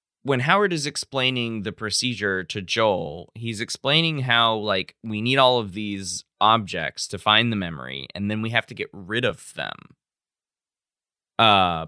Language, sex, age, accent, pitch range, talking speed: English, male, 20-39, American, 95-120 Hz, 160 wpm